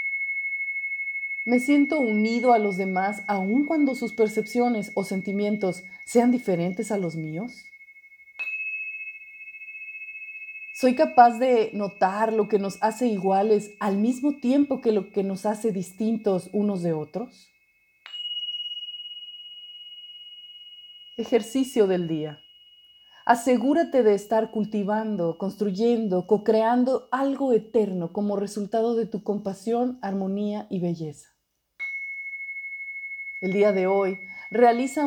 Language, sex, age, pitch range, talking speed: Spanish, female, 40-59, 200-280 Hz, 105 wpm